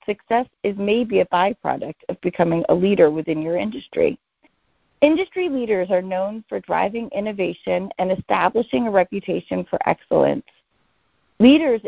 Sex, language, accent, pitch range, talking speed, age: female, English, American, 180-255 Hz, 130 wpm, 40-59